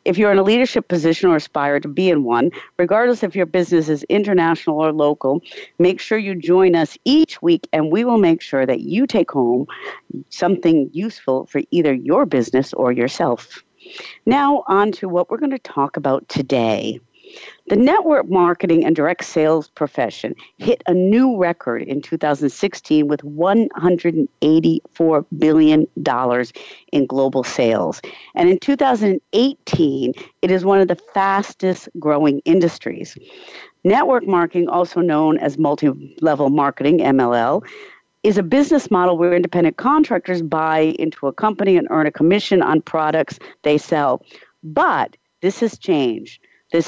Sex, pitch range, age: female, 155-220 Hz, 50-69